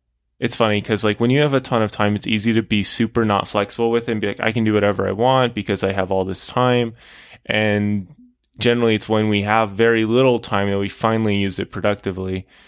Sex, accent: male, American